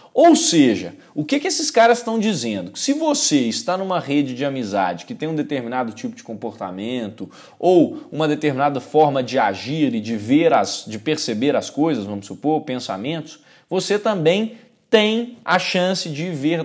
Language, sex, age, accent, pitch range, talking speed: Portuguese, male, 20-39, Brazilian, 145-205 Hz, 170 wpm